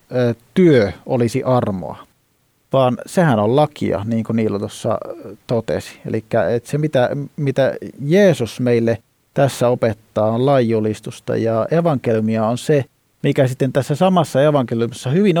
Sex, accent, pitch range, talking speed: male, native, 110-145 Hz, 125 wpm